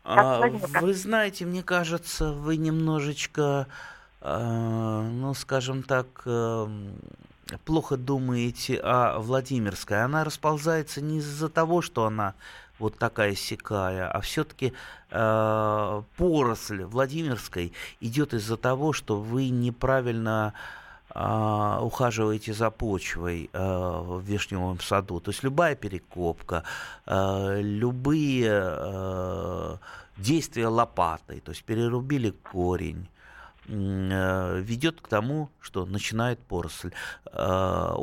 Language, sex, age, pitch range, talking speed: Russian, male, 30-49, 95-135 Hz, 90 wpm